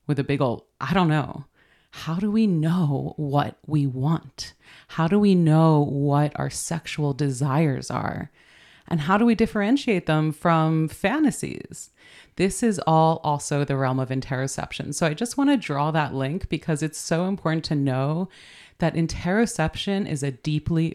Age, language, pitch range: 30-49, English, 140-180 Hz